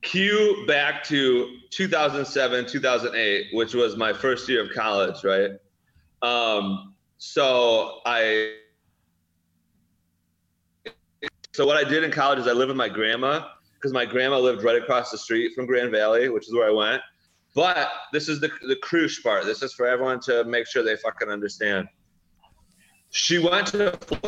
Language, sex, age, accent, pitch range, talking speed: English, male, 30-49, American, 110-155 Hz, 160 wpm